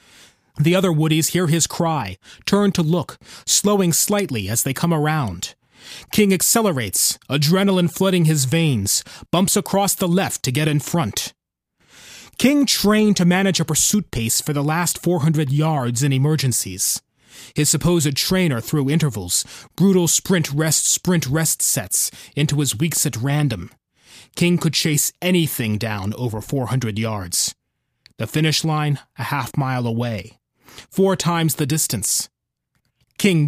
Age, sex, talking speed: 30-49, male, 135 wpm